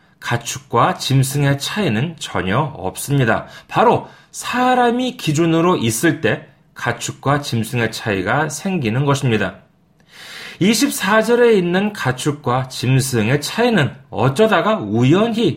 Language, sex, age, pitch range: Korean, male, 40-59, 130-215 Hz